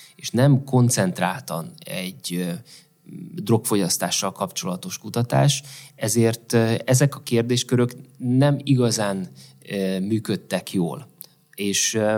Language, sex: Hungarian, male